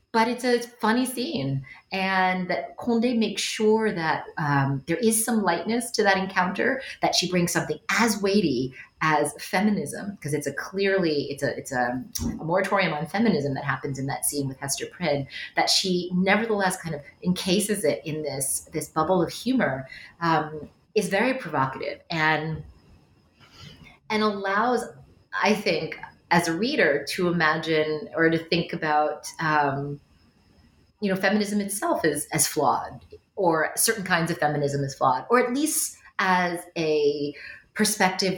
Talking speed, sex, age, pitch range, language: 155 wpm, female, 30-49, 145-200 Hz, English